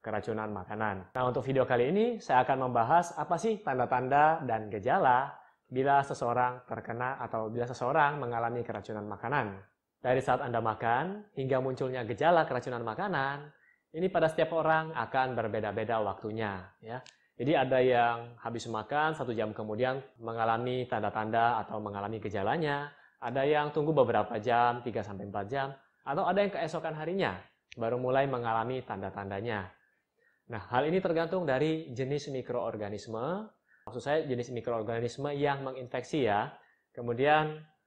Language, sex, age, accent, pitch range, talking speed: Indonesian, male, 20-39, native, 115-145 Hz, 140 wpm